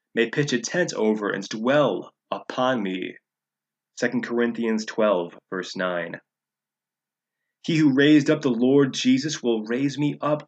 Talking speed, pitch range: 145 wpm, 110-145 Hz